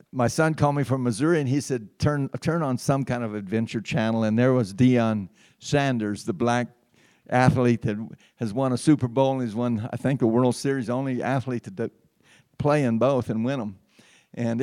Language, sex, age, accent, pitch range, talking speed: English, male, 60-79, American, 120-145 Hz, 200 wpm